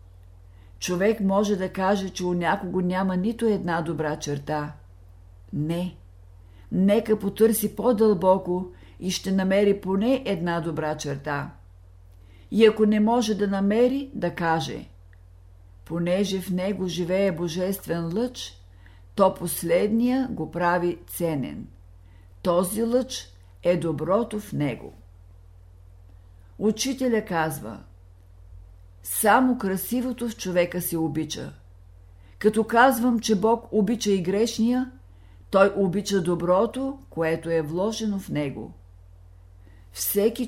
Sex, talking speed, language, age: female, 105 wpm, Bulgarian, 50-69